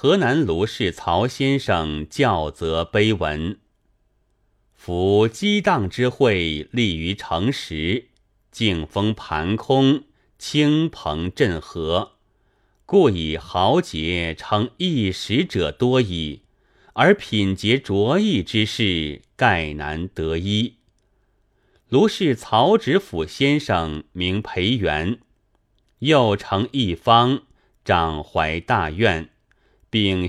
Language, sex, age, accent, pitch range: Chinese, male, 30-49, native, 90-125 Hz